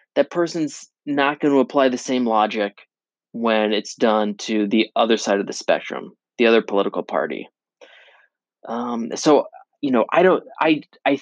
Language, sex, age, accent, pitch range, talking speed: English, male, 20-39, American, 110-140 Hz, 165 wpm